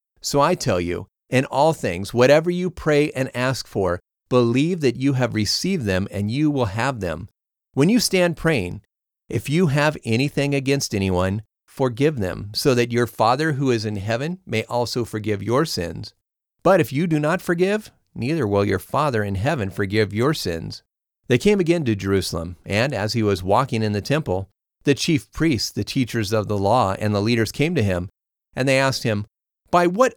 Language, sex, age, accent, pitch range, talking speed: English, male, 40-59, American, 100-145 Hz, 195 wpm